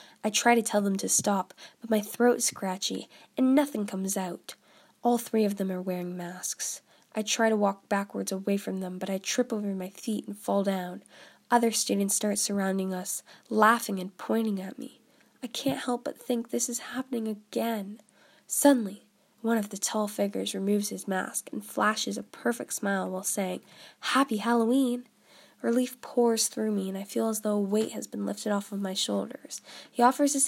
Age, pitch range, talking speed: 10-29, 195-245 Hz, 195 wpm